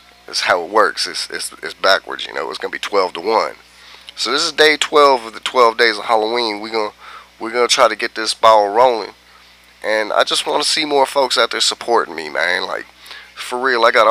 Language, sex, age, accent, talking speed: English, male, 30-49, American, 235 wpm